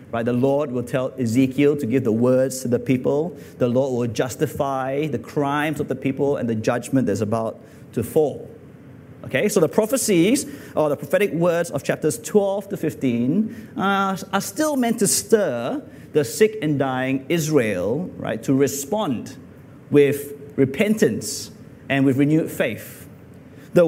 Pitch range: 130-175 Hz